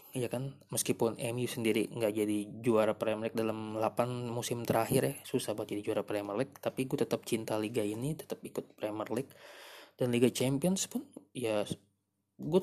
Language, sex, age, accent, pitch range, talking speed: Indonesian, male, 20-39, native, 115-135 Hz, 175 wpm